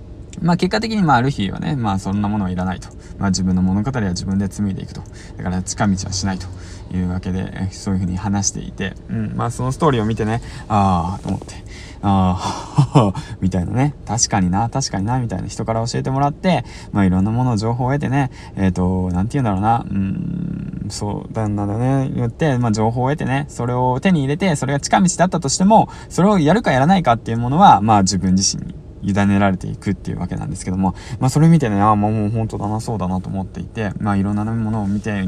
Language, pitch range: Japanese, 95-135 Hz